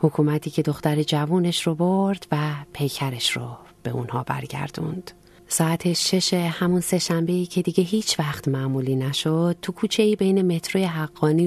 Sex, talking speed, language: female, 140 wpm, Persian